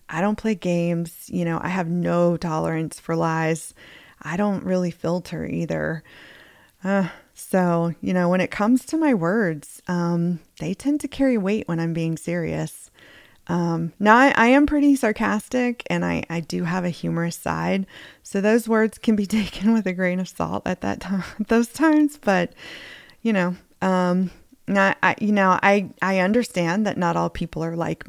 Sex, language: female, English